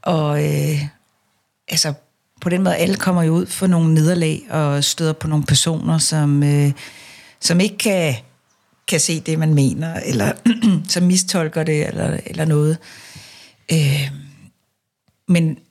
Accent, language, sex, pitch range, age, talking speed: native, Danish, female, 145-170 Hz, 60-79, 145 wpm